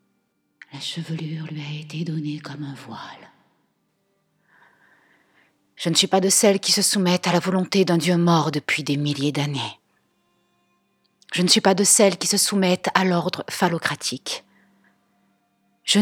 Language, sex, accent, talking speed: French, female, French, 155 wpm